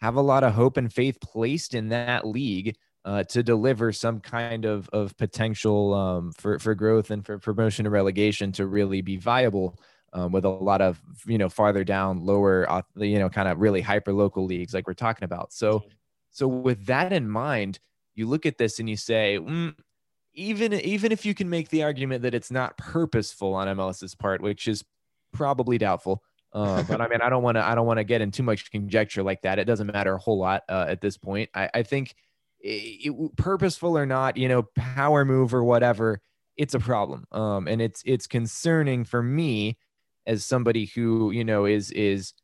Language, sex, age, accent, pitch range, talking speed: English, male, 20-39, American, 100-125 Hz, 205 wpm